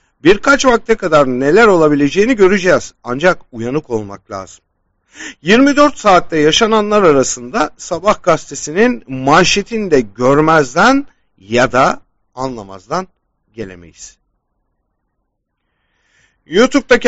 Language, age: German, 50-69